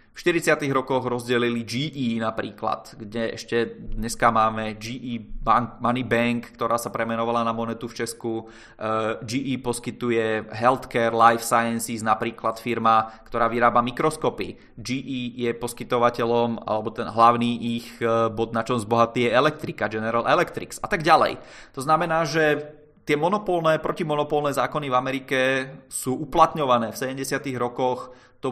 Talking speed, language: 140 wpm, Czech